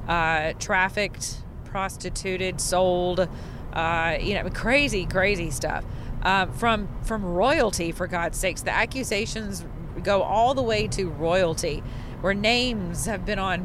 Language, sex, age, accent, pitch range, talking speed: English, female, 40-59, American, 160-230 Hz, 130 wpm